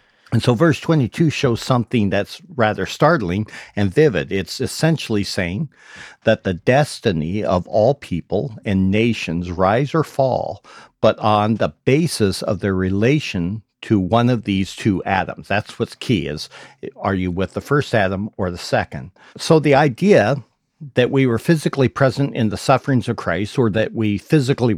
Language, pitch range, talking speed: English, 100-130 Hz, 165 wpm